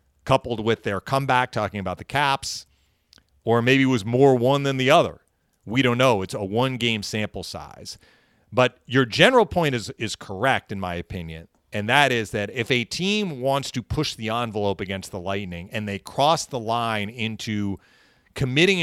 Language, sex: English, male